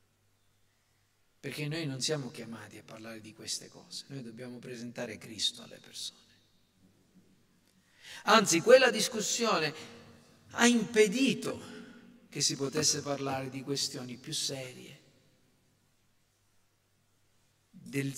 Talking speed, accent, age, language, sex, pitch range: 100 wpm, native, 50-69, Italian, male, 115-175 Hz